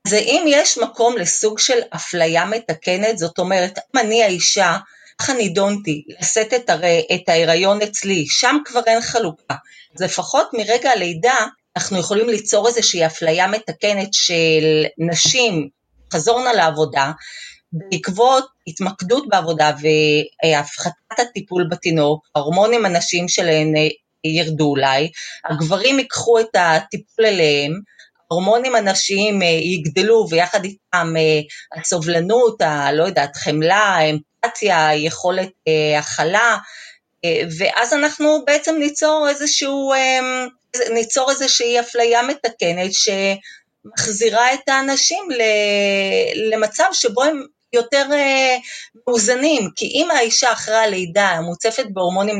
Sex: female